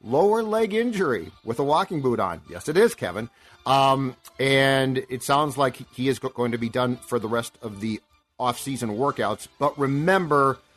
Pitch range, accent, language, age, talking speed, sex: 120-155 Hz, American, English, 40-59, 185 wpm, male